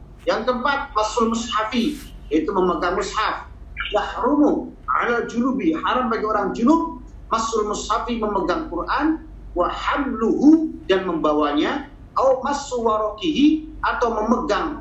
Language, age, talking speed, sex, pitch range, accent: Indonesian, 50-69, 100 wpm, male, 220-300 Hz, native